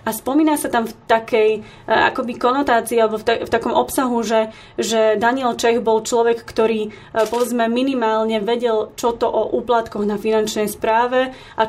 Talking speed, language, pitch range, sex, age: 155 wpm, Slovak, 215-240 Hz, female, 20-39